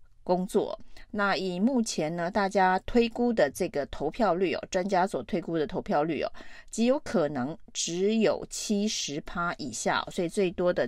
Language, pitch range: Chinese, 160-215 Hz